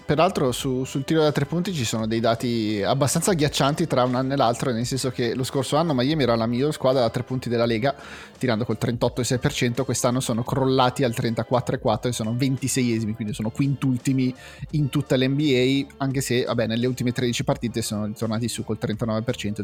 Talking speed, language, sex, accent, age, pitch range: 200 wpm, Italian, male, native, 30-49, 115-140 Hz